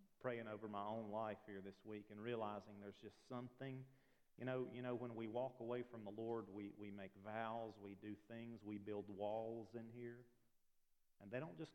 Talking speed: 205 wpm